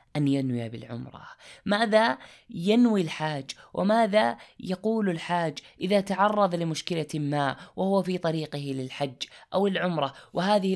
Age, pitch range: 20-39, 130-180 Hz